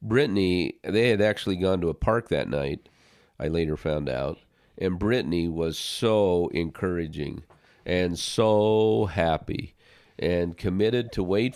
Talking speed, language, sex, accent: 135 wpm, English, male, American